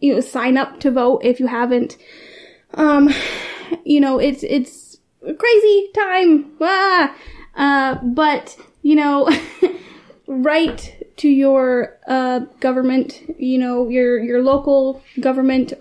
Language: English